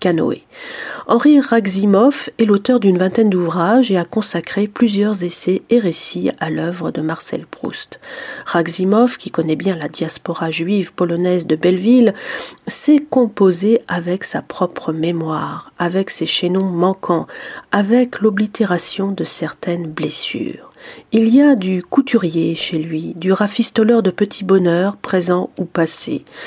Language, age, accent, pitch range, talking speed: French, 40-59, French, 175-230 Hz, 135 wpm